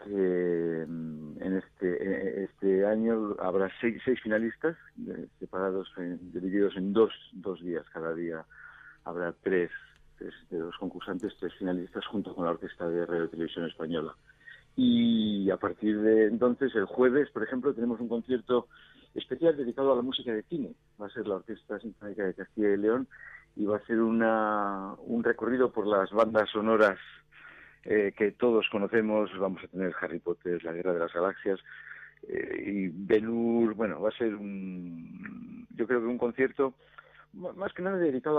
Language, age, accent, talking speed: Spanish, 50-69, Spanish, 165 wpm